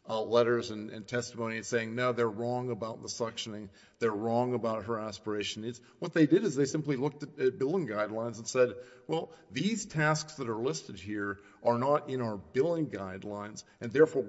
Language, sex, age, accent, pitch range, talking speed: English, male, 50-69, American, 105-130 Hz, 195 wpm